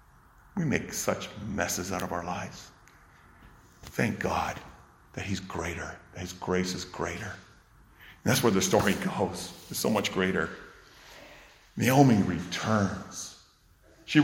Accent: American